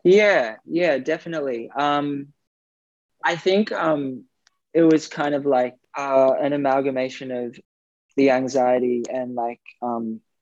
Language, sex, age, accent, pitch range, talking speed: English, male, 20-39, Australian, 125-135 Hz, 120 wpm